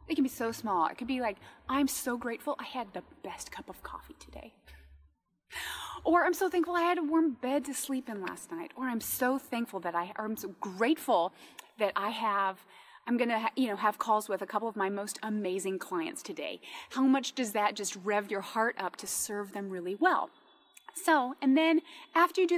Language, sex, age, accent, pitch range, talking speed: English, female, 30-49, American, 210-310 Hz, 230 wpm